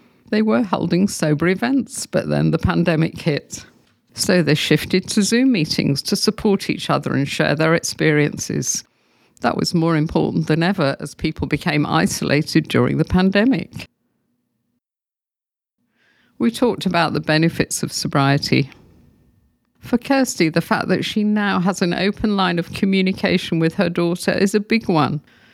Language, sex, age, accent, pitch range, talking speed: English, female, 50-69, British, 160-205 Hz, 150 wpm